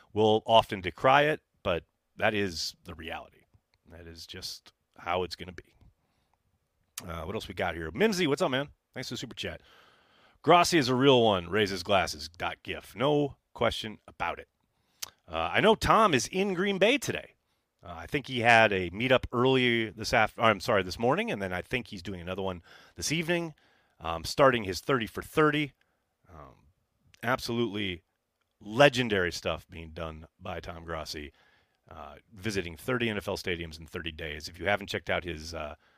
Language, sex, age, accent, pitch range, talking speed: English, male, 30-49, American, 90-135 Hz, 180 wpm